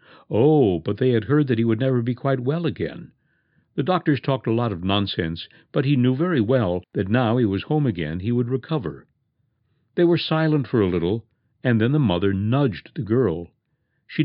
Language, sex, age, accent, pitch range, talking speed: English, male, 60-79, American, 100-135 Hz, 200 wpm